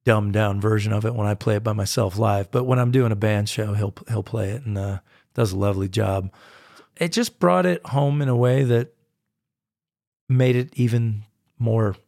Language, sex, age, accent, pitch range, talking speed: English, male, 40-59, American, 105-125 Hz, 205 wpm